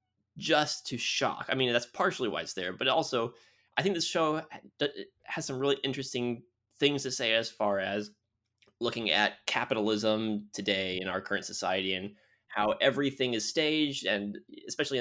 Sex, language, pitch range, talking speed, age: male, English, 105-140 Hz, 165 wpm, 20-39